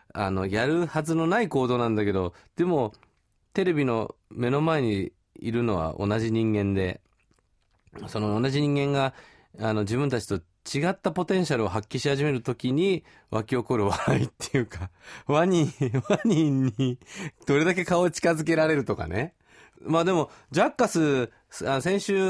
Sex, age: male, 40-59